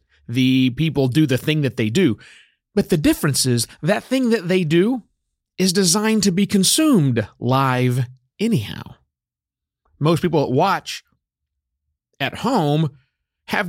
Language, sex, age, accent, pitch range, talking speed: English, male, 40-59, American, 115-170 Hz, 135 wpm